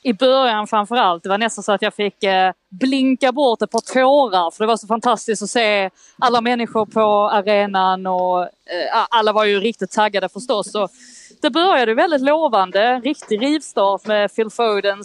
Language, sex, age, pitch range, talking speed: Swedish, female, 20-39, 200-250 Hz, 170 wpm